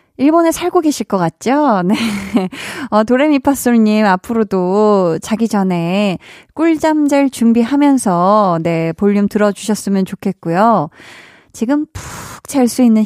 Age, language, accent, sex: 20-39, Korean, native, female